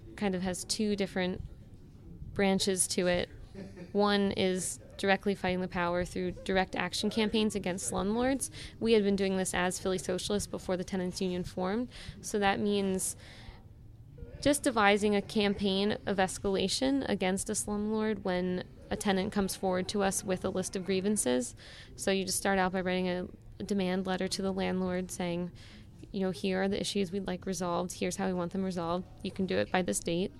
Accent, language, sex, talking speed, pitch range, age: American, English, female, 185 wpm, 180-200 Hz, 10-29